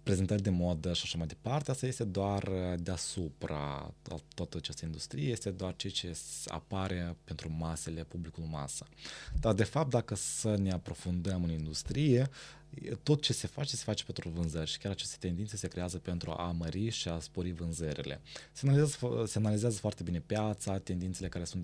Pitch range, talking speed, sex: 85-115 Hz, 170 wpm, male